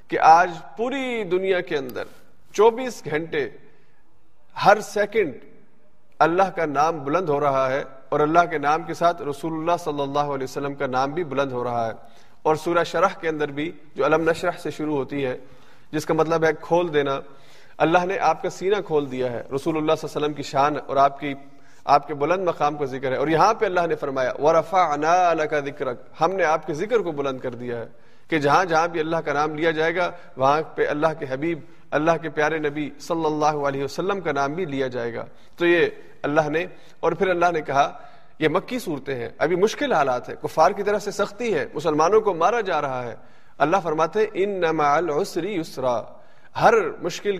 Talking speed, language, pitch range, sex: 210 wpm, Urdu, 140-180 Hz, male